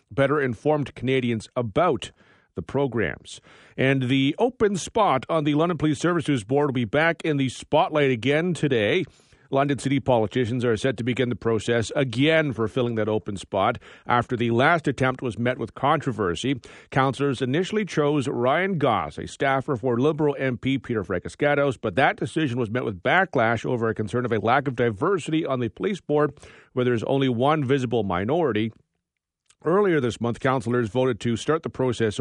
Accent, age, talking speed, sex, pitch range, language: American, 40-59, 175 wpm, male, 120-145 Hz, English